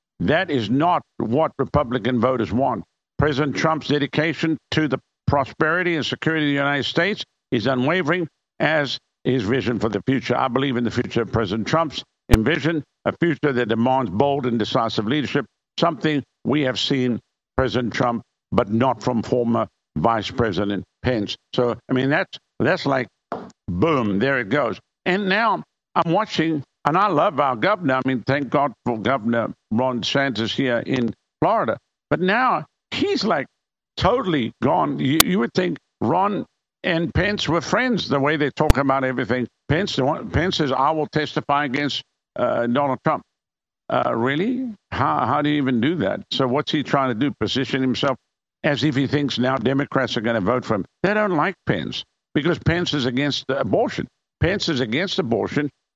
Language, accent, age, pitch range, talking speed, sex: English, American, 60-79, 125-150 Hz, 170 wpm, male